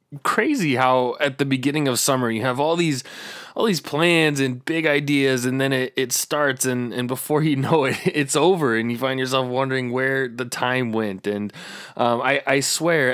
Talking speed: 200 wpm